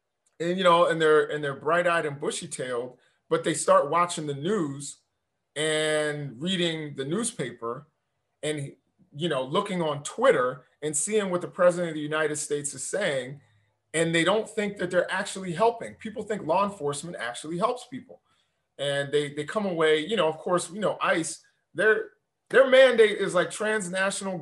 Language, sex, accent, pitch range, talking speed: English, male, American, 150-200 Hz, 175 wpm